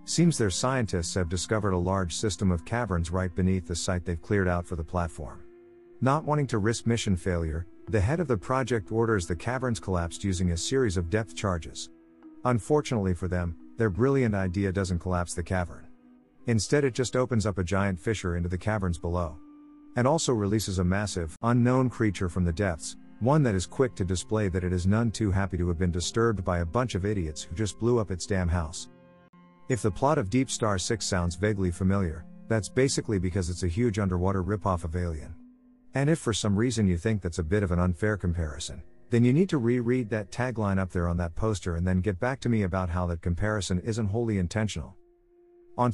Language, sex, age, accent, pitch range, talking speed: English, male, 50-69, American, 90-120 Hz, 210 wpm